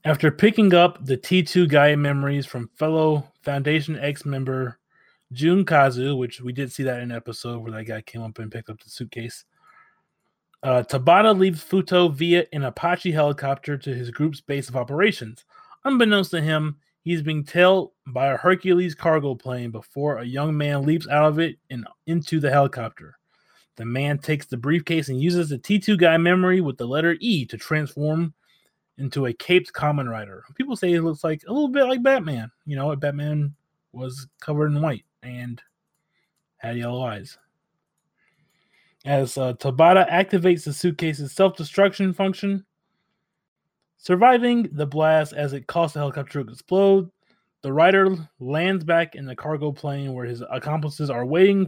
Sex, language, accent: male, English, American